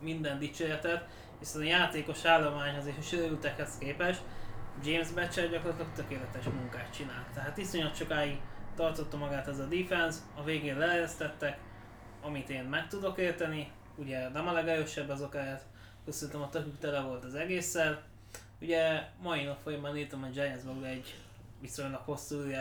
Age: 20-39